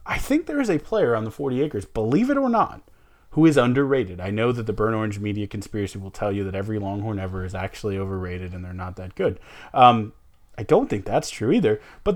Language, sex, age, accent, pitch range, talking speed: English, male, 30-49, American, 100-125 Hz, 235 wpm